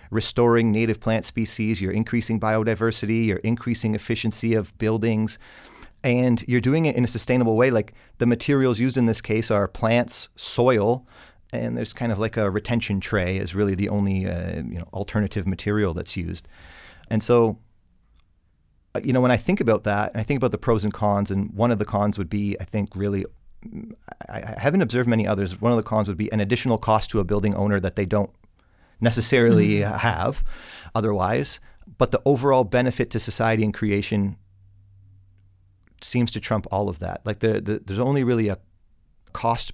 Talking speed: 185 wpm